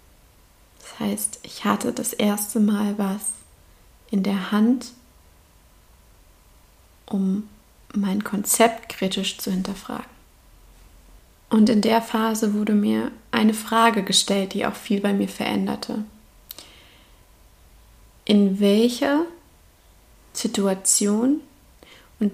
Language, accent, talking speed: German, German, 90 wpm